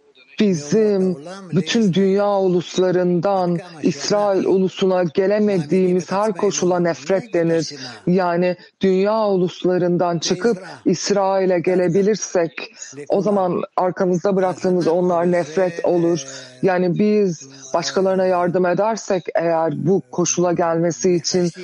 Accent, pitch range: native, 170-195 Hz